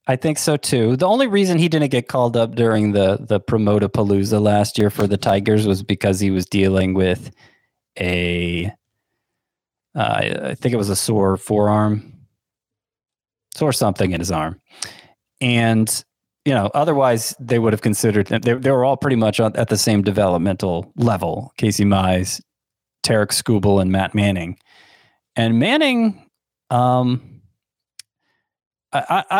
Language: English